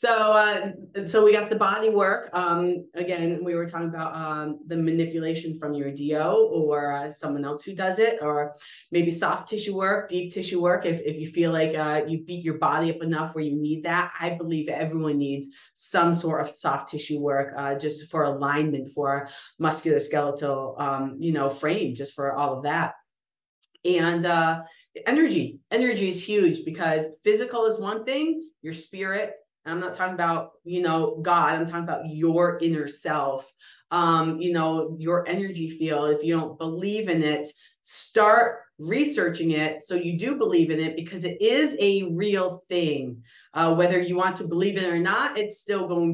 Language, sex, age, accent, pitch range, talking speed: English, female, 30-49, American, 150-185 Hz, 185 wpm